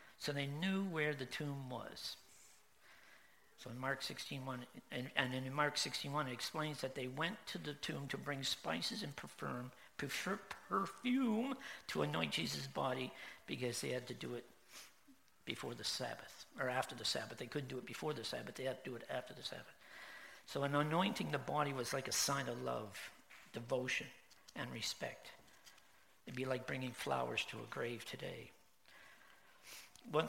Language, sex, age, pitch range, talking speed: English, male, 60-79, 115-150 Hz, 170 wpm